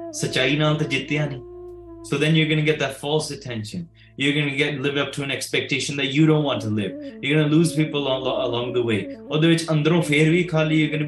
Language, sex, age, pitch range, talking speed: English, male, 20-39, 130-155 Hz, 175 wpm